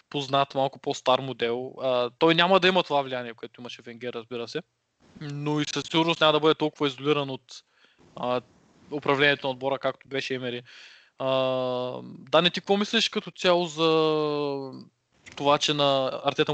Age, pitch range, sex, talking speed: 20-39, 135-165 Hz, male, 165 wpm